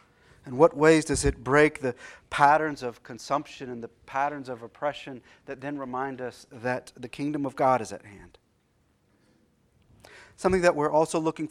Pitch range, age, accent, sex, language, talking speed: 120-145 Hz, 40-59, American, male, English, 165 wpm